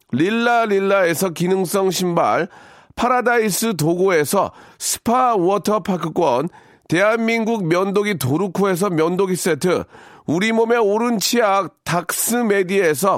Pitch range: 185-230 Hz